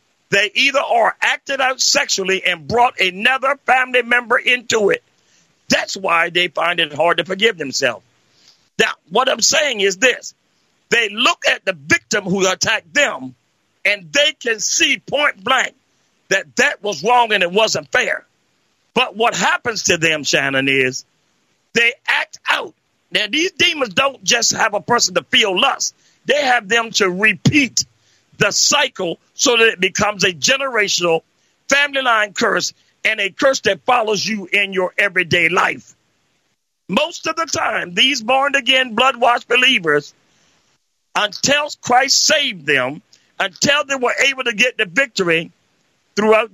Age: 50-69